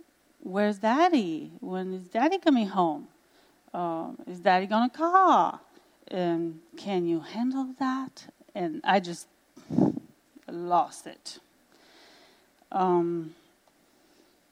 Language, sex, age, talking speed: English, female, 30-49, 95 wpm